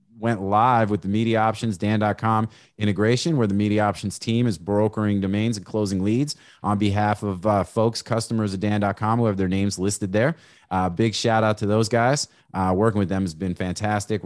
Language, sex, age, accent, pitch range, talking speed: English, male, 30-49, American, 100-120 Hz, 200 wpm